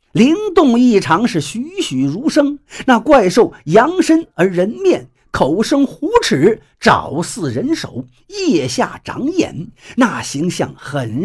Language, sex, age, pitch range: Chinese, male, 50-69, 195-295 Hz